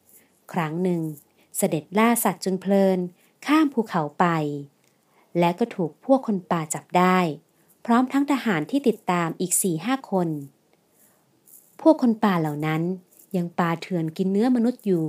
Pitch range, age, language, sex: 165-210 Hz, 30-49, Thai, female